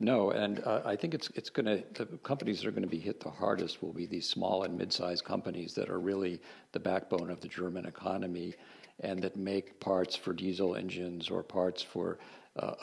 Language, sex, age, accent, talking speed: English, male, 50-69, American, 215 wpm